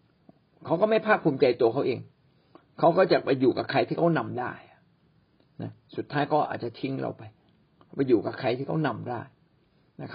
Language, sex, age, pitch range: Thai, male, 60-79, 140-165 Hz